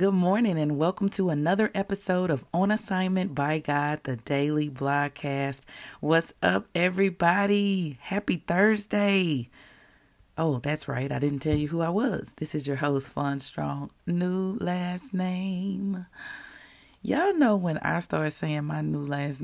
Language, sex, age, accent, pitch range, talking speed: English, female, 30-49, American, 145-210 Hz, 150 wpm